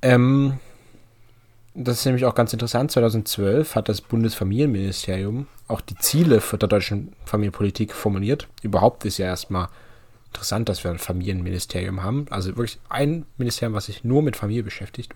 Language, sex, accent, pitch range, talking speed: German, male, German, 105-120 Hz, 155 wpm